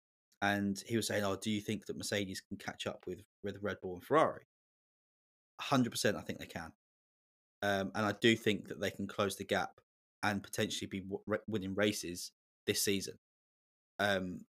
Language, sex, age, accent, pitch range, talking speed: English, male, 20-39, British, 100-120 Hz, 180 wpm